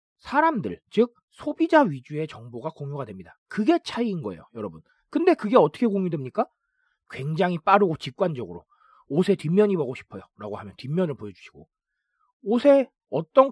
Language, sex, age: Korean, male, 40-59